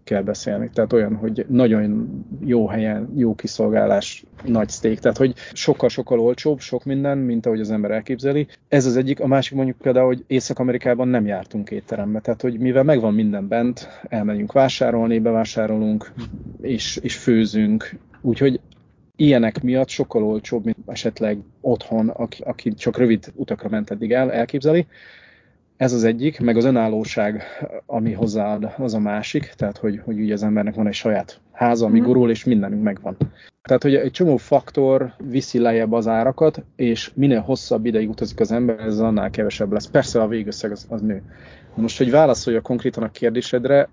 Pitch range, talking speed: 110-130 Hz, 165 wpm